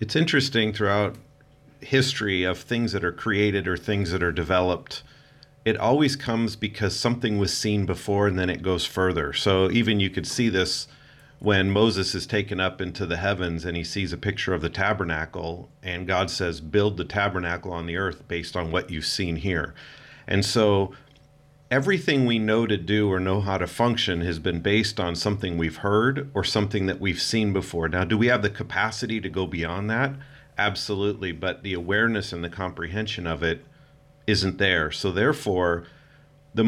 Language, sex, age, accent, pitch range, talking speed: English, male, 40-59, American, 90-115 Hz, 185 wpm